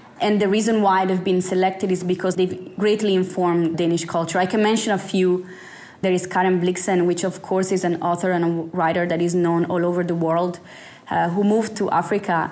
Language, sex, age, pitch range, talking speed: English, female, 20-39, 170-190 Hz, 210 wpm